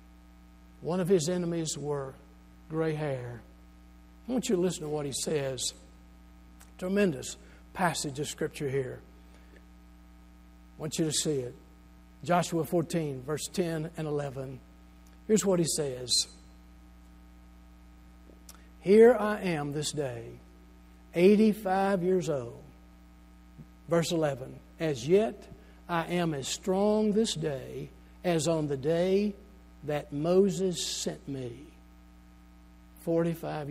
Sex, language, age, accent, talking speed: male, English, 60-79, American, 115 wpm